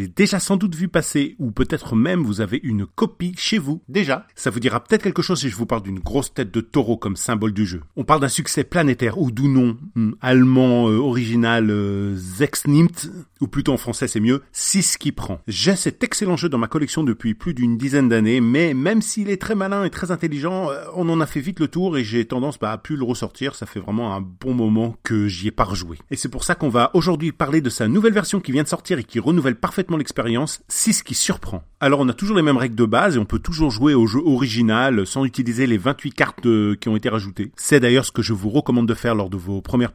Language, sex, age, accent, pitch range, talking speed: French, male, 40-59, French, 115-155 Hz, 255 wpm